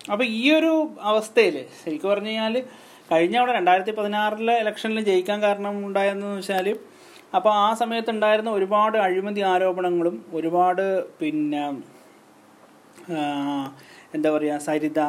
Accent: native